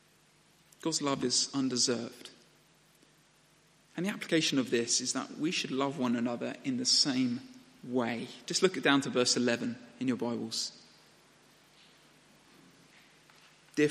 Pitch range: 130-175 Hz